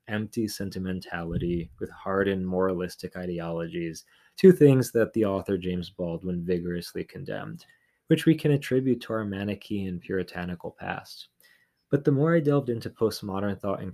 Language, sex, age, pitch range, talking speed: English, male, 20-39, 95-120 Hz, 140 wpm